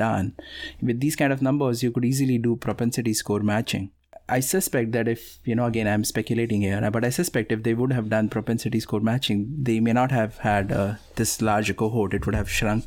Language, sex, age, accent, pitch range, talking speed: English, male, 30-49, Indian, 105-125 Hz, 220 wpm